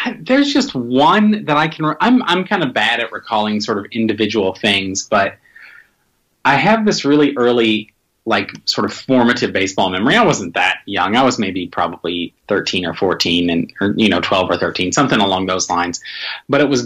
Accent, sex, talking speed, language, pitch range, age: American, male, 190 wpm, English, 105-130 Hz, 30-49